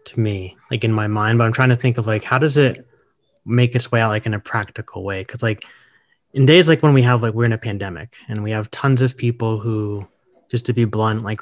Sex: male